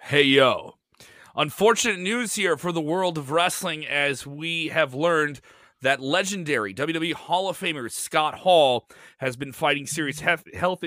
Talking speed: 150 wpm